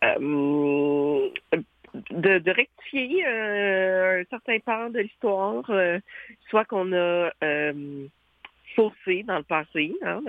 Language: French